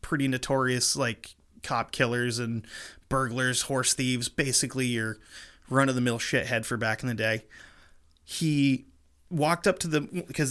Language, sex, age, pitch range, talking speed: English, male, 30-49, 120-155 Hz, 135 wpm